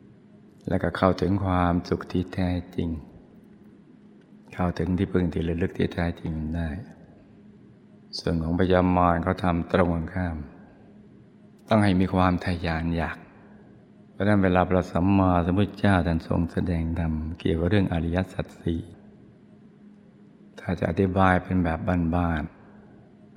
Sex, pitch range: male, 85-100 Hz